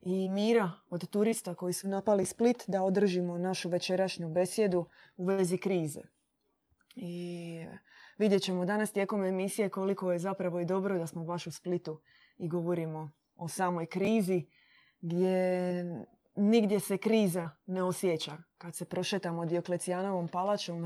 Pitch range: 175-210 Hz